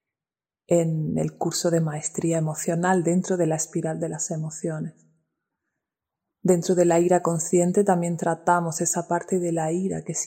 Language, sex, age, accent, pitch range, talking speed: Spanish, female, 20-39, Spanish, 170-190 Hz, 160 wpm